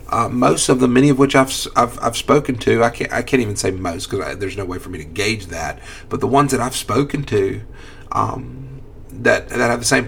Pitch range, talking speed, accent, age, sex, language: 100-130 Hz, 245 wpm, American, 40-59, male, English